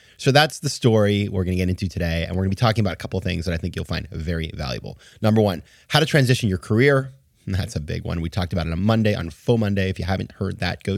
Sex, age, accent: male, 30-49, American